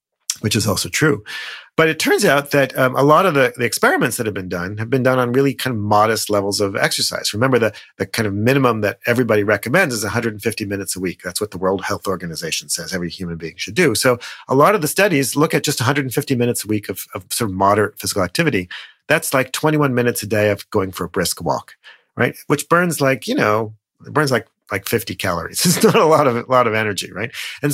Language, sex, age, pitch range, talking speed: English, male, 40-59, 100-140 Hz, 240 wpm